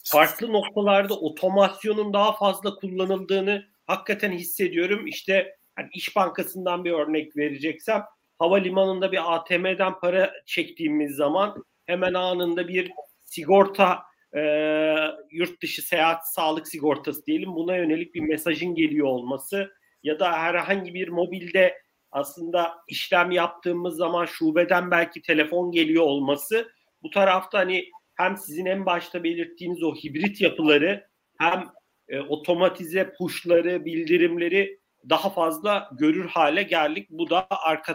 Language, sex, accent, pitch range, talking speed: Turkish, male, native, 160-205 Hz, 115 wpm